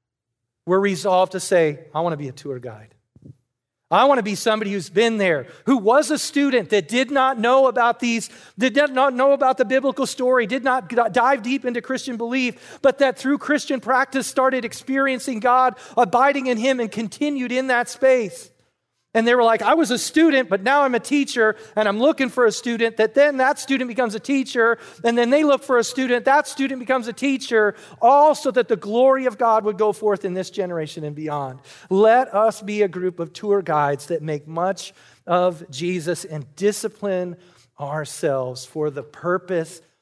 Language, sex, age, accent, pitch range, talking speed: English, male, 40-59, American, 160-255 Hz, 195 wpm